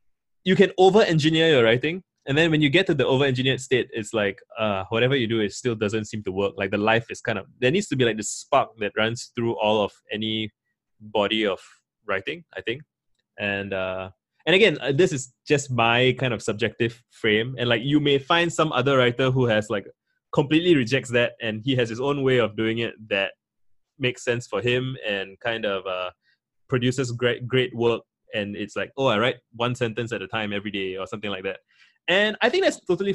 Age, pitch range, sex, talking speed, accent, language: 20-39, 110-150 Hz, male, 215 wpm, Malaysian, English